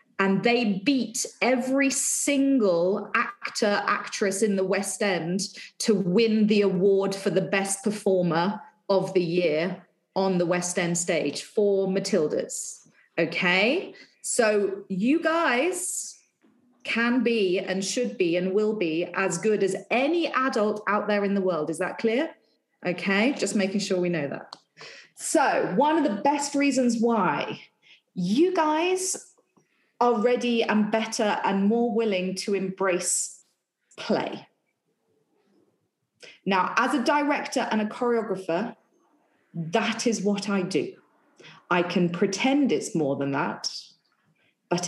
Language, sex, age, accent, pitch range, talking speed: English, female, 30-49, British, 185-245 Hz, 135 wpm